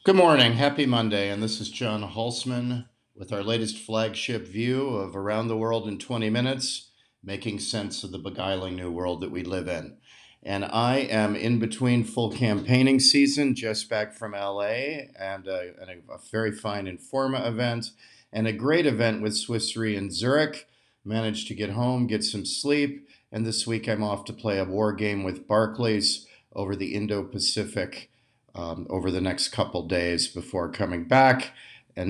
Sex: male